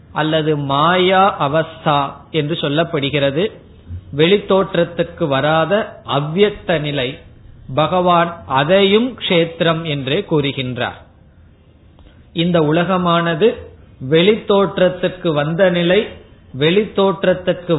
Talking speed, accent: 65 wpm, native